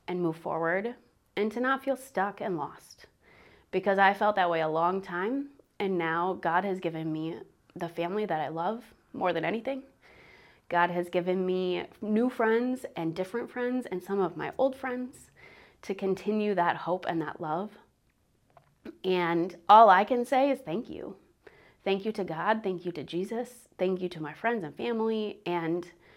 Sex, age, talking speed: female, 30-49, 180 wpm